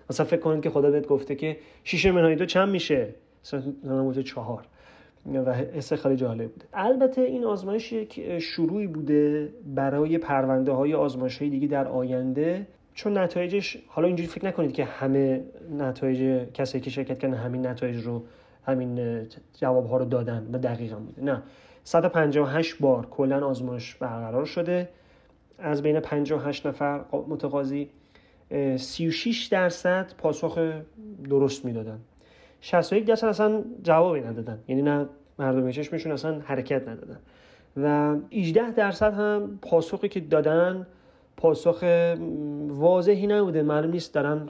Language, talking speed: Persian, 140 wpm